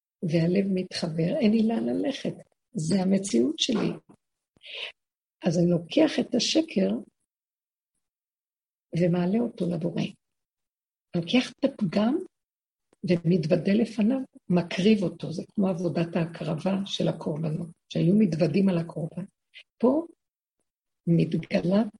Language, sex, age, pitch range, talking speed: Hebrew, female, 50-69, 170-220 Hz, 100 wpm